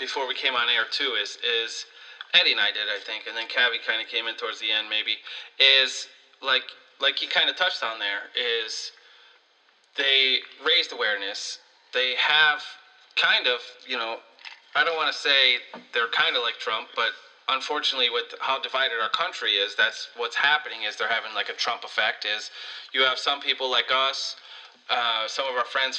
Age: 30-49